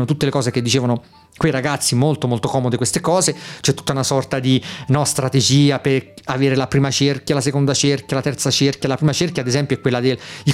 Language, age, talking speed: Italian, 40-59, 215 wpm